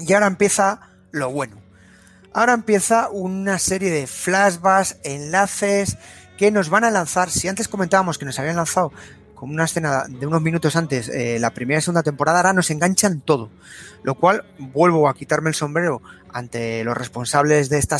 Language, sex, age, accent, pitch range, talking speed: Spanish, male, 30-49, Spanish, 135-170 Hz, 175 wpm